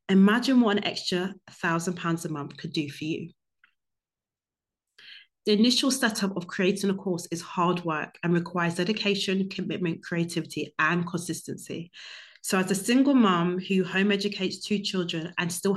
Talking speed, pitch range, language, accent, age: 150 wpm, 170-200 Hz, English, British, 30-49